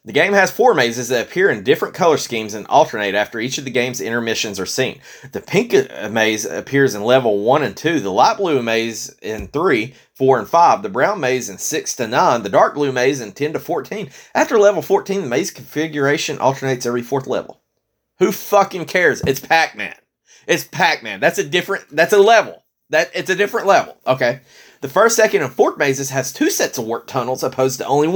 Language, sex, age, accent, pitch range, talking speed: English, male, 30-49, American, 130-195 Hz, 210 wpm